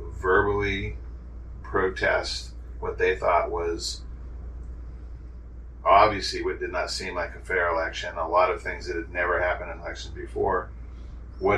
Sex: male